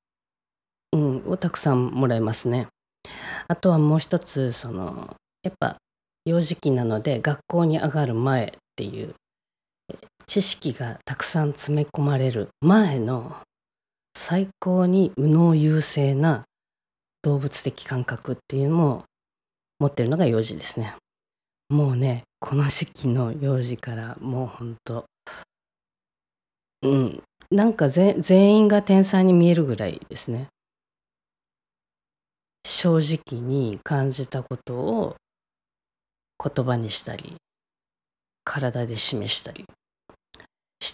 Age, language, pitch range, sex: 20-39, Japanese, 125-170 Hz, female